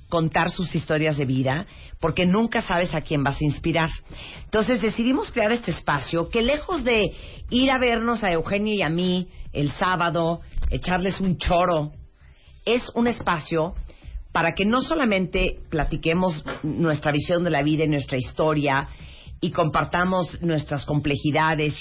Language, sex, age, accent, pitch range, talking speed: Spanish, female, 40-59, Mexican, 145-200 Hz, 150 wpm